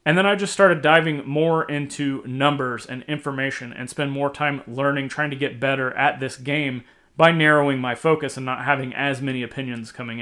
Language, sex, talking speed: English, male, 200 wpm